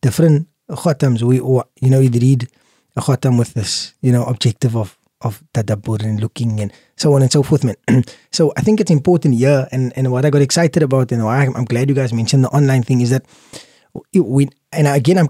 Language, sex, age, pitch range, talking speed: English, male, 20-39, 120-150 Hz, 230 wpm